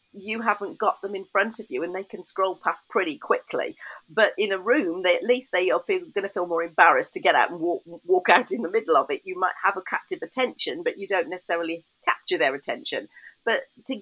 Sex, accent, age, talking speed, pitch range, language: female, British, 40-59, 245 wpm, 195-295 Hz, English